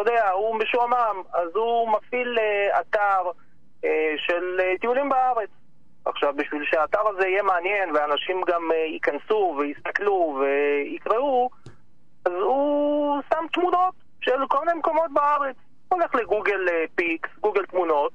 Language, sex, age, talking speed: Hebrew, male, 30-49, 120 wpm